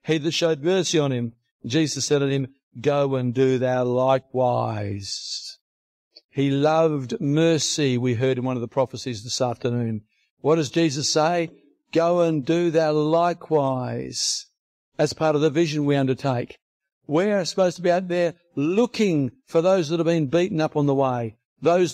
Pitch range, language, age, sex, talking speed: 140-175 Hz, English, 60-79, male, 165 wpm